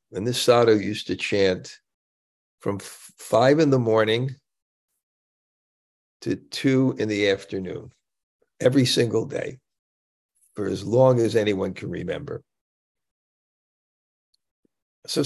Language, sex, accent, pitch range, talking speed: English, male, American, 100-130 Hz, 110 wpm